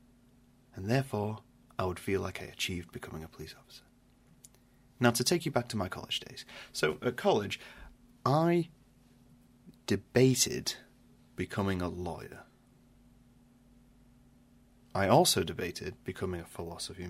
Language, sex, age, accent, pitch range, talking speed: English, male, 30-49, British, 90-125 Hz, 125 wpm